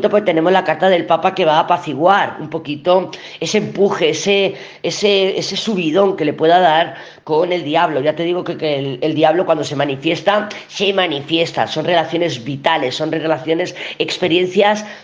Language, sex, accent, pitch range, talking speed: Spanish, female, Spanish, 155-195 Hz, 175 wpm